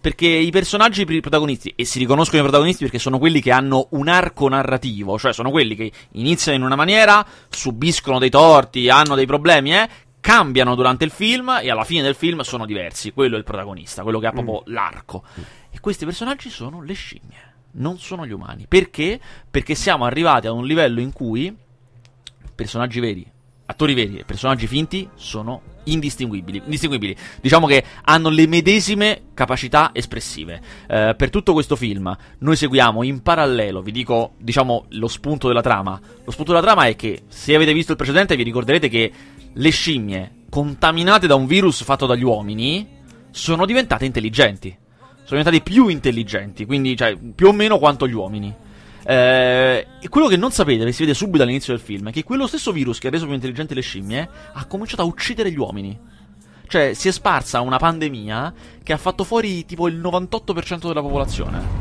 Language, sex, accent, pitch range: Italian, male, native, 120-165 Hz